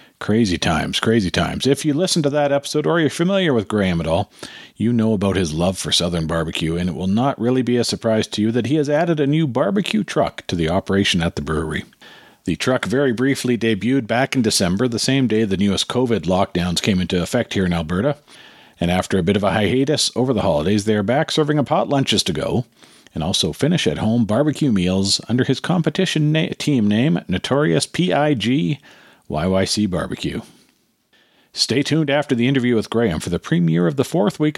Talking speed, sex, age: 210 wpm, male, 50-69